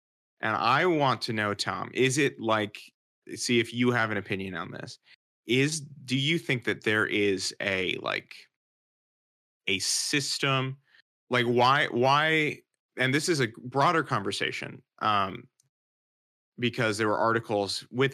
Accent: American